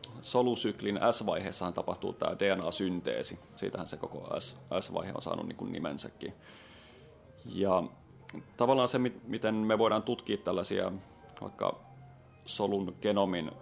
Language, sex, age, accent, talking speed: Finnish, male, 30-49, native, 95 wpm